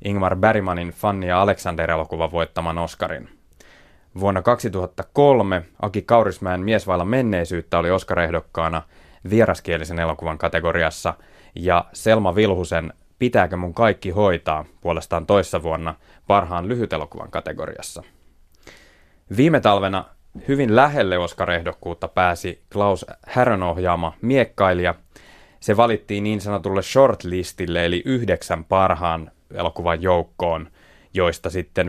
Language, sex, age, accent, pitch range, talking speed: Finnish, male, 20-39, native, 85-100 Hz, 105 wpm